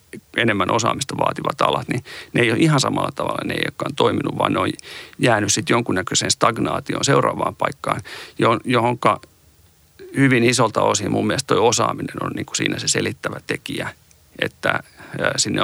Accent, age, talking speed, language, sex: native, 40-59, 155 wpm, Finnish, male